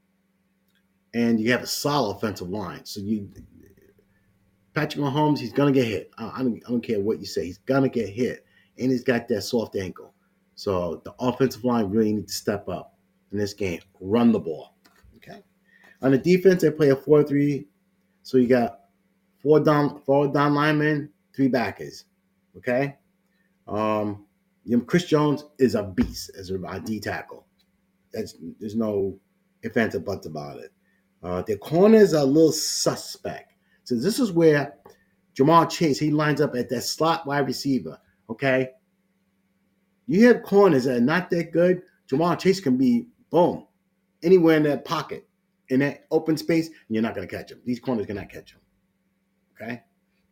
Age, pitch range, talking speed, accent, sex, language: 30-49, 115-185 Hz, 170 wpm, American, male, English